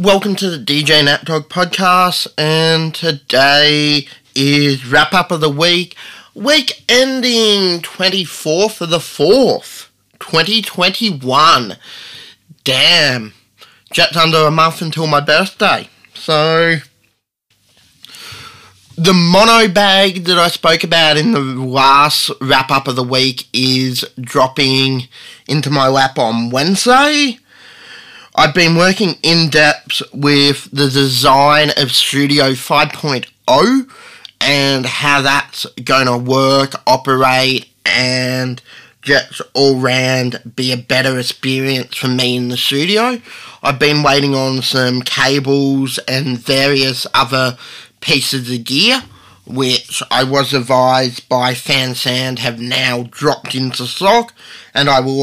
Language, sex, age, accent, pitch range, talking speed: English, male, 20-39, Australian, 130-165 Hz, 115 wpm